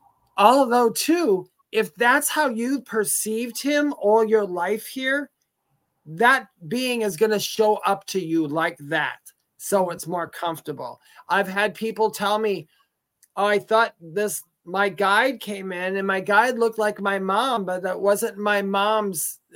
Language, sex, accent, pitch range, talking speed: English, male, American, 185-230 Hz, 160 wpm